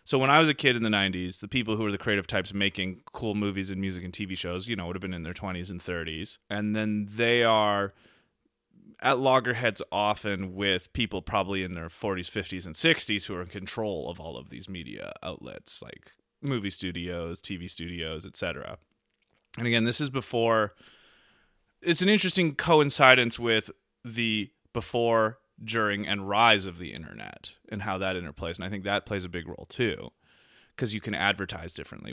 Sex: male